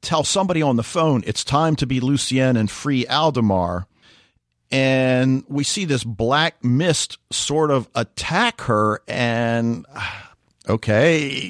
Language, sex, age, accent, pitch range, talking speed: English, male, 50-69, American, 110-145 Hz, 130 wpm